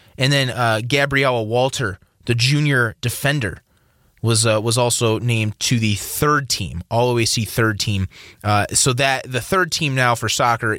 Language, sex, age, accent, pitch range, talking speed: English, male, 30-49, American, 105-125 Hz, 165 wpm